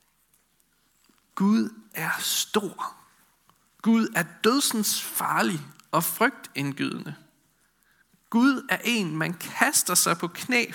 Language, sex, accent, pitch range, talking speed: Danish, male, native, 155-210 Hz, 95 wpm